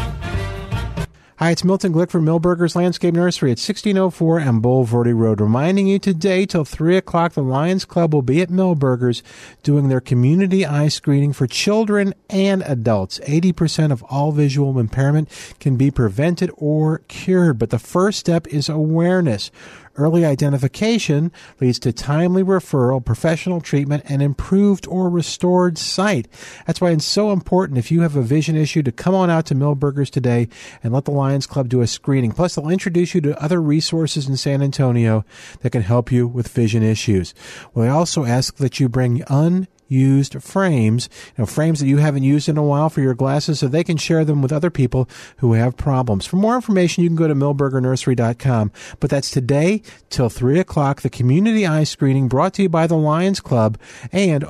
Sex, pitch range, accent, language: male, 130-175 Hz, American, English